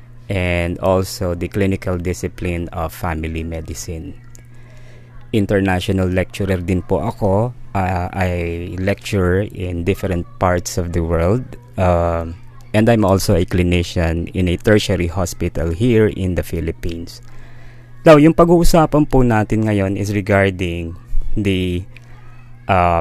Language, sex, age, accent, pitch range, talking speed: Filipino, male, 20-39, native, 90-120 Hz, 125 wpm